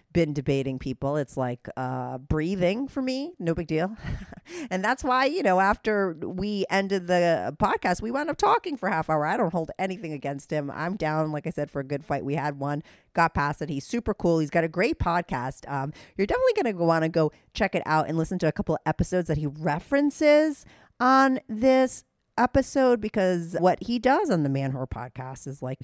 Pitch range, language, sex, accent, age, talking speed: 145-210 Hz, English, female, American, 40-59, 220 wpm